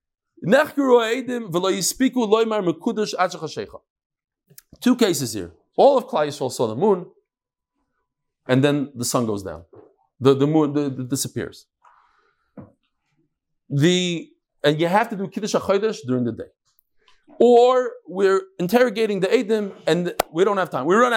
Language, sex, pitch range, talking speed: English, male, 160-245 Hz, 130 wpm